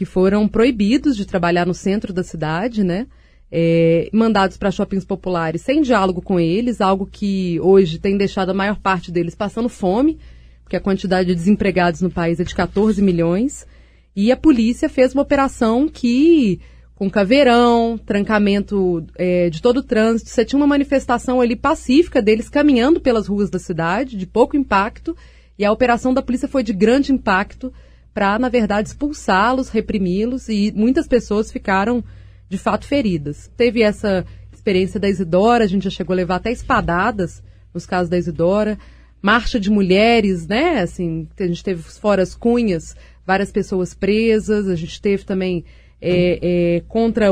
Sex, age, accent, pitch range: female, 30-49, Brazilian, 180-230 Hz